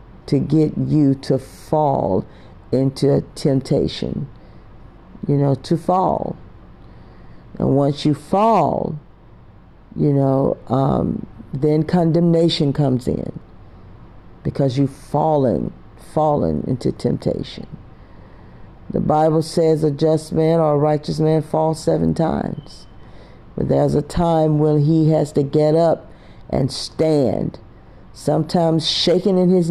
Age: 50-69